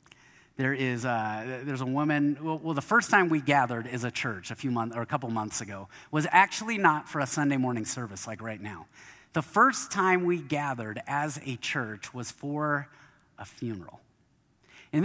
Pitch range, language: 125-170 Hz, English